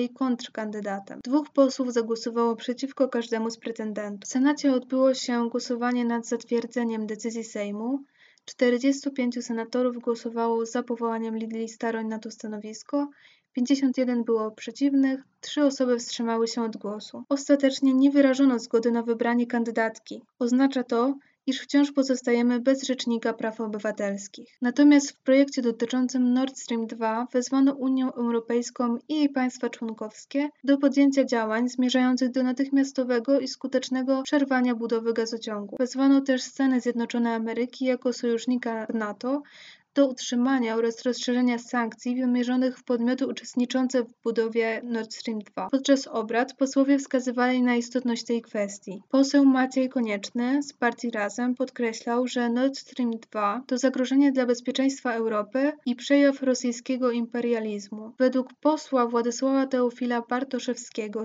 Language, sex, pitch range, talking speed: Polish, female, 230-265 Hz, 130 wpm